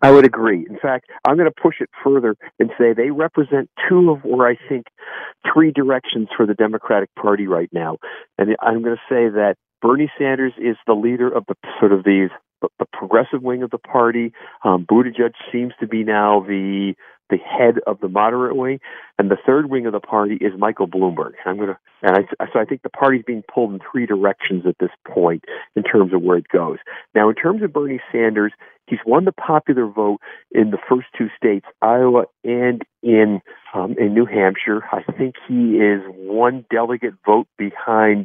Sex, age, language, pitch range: male, 50-69, English, 105-125 Hz